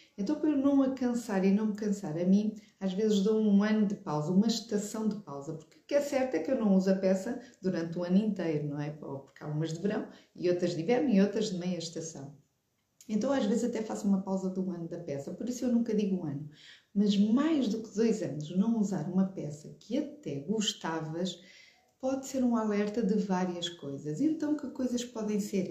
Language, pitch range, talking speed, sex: Portuguese, 170-225 Hz, 230 wpm, female